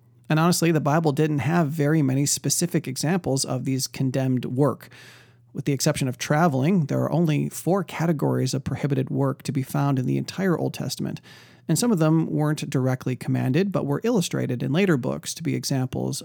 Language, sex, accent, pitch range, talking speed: English, male, American, 125-150 Hz, 190 wpm